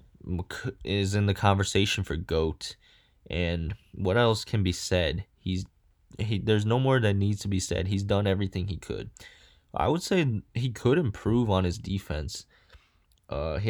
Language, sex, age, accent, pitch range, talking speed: English, male, 20-39, American, 85-110 Hz, 165 wpm